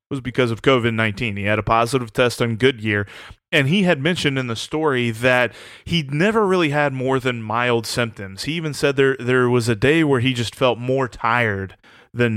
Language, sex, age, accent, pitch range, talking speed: English, male, 30-49, American, 110-135 Hz, 205 wpm